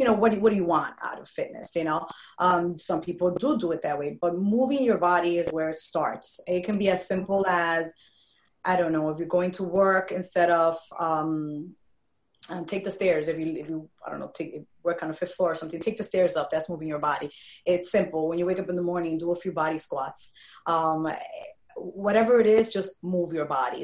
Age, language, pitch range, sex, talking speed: 20-39, English, 165-185 Hz, female, 240 wpm